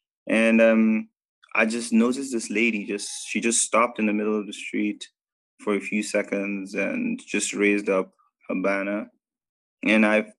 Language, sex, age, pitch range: English, male, 20-39, 100-115 Hz